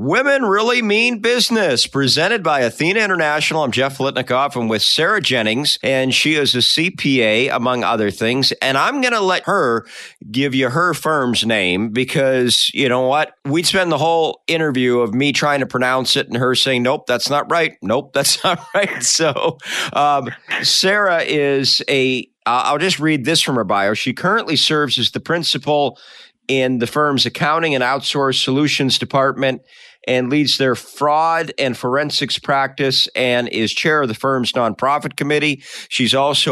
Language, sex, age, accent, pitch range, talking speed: English, male, 50-69, American, 125-150 Hz, 170 wpm